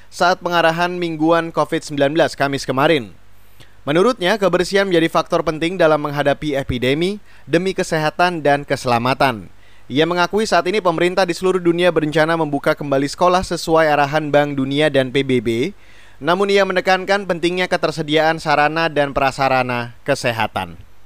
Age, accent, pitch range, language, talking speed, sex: 20-39, native, 135-175 Hz, Indonesian, 130 wpm, male